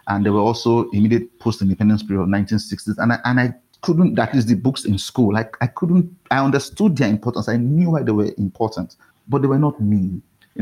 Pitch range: 100-120 Hz